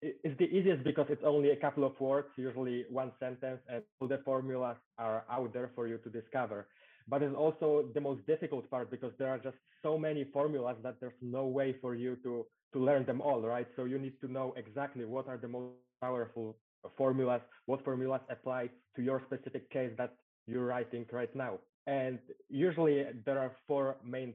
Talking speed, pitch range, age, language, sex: 195 wpm, 120-140 Hz, 20-39, English, male